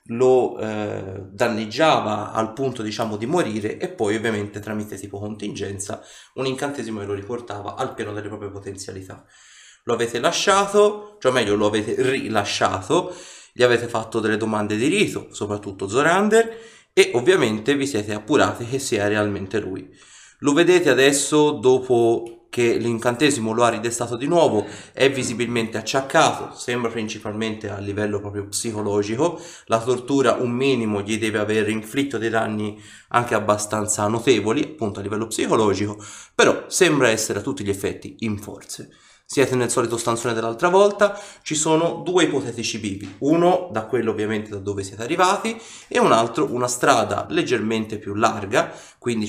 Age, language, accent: 30-49, Italian, native